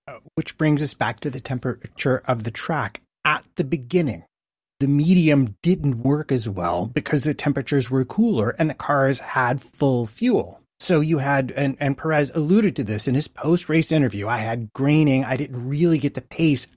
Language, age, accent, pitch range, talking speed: English, 30-49, American, 125-165 Hz, 185 wpm